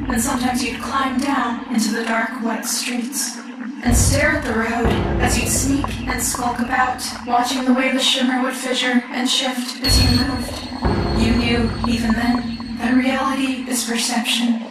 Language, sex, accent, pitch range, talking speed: English, female, American, 235-255 Hz, 165 wpm